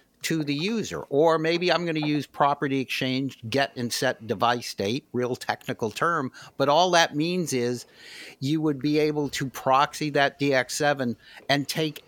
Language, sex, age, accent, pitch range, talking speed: English, male, 60-79, American, 120-150 Hz, 170 wpm